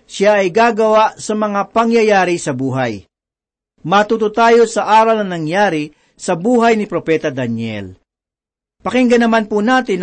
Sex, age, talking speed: male, 50-69, 140 wpm